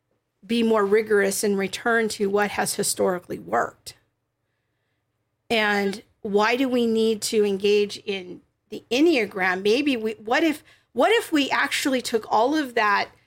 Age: 50-69